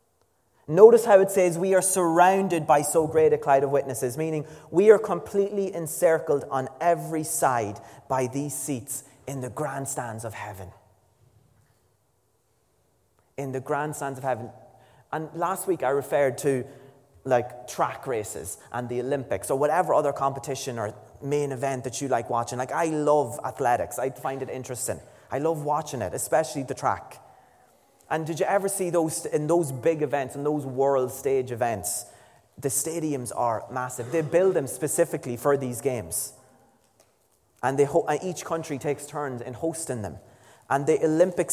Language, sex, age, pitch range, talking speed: English, male, 30-49, 125-160 Hz, 165 wpm